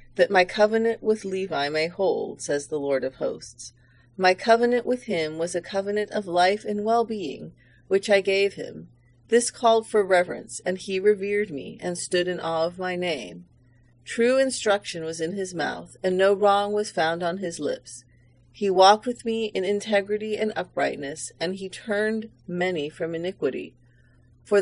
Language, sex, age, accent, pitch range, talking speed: English, female, 40-59, American, 160-210 Hz, 175 wpm